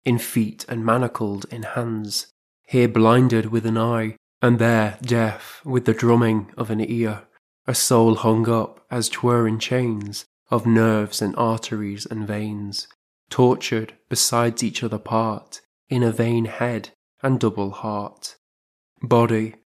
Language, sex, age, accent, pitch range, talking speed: English, male, 20-39, British, 110-120 Hz, 145 wpm